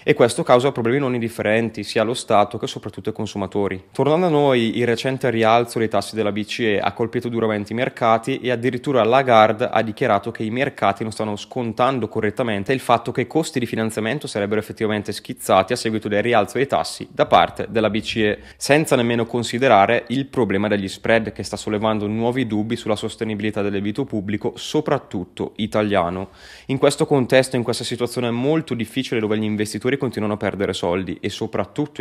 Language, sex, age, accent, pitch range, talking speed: Italian, male, 20-39, native, 105-120 Hz, 180 wpm